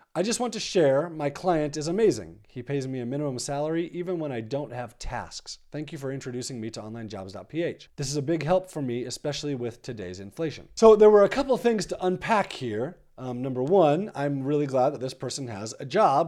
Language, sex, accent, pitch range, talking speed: English, male, American, 140-195 Hz, 220 wpm